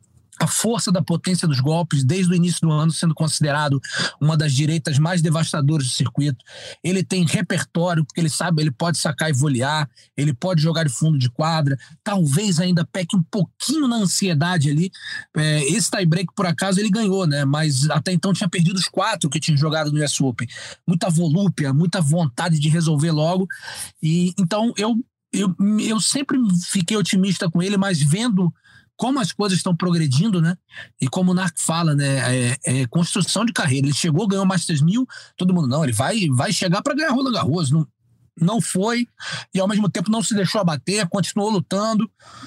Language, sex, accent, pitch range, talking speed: Portuguese, male, Brazilian, 155-195 Hz, 185 wpm